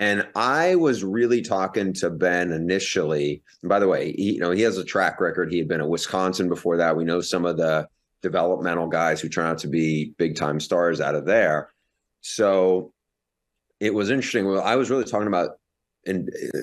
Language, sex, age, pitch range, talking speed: English, male, 30-49, 85-95 Hz, 200 wpm